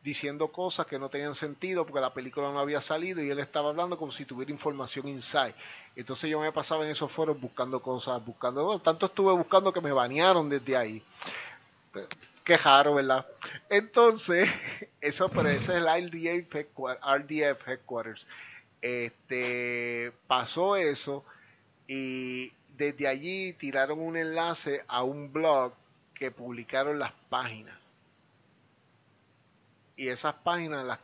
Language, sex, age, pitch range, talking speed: English, male, 30-49, 130-155 Hz, 135 wpm